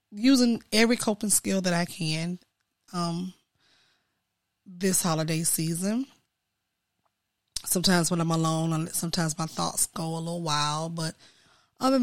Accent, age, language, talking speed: American, 20-39, English, 120 wpm